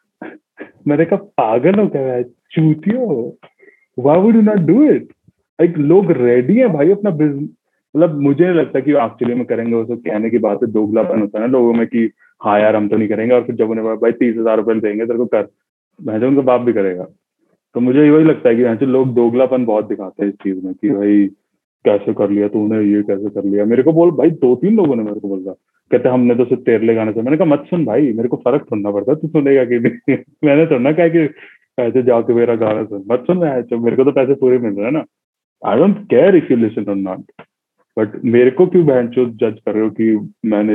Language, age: Hindi, 30-49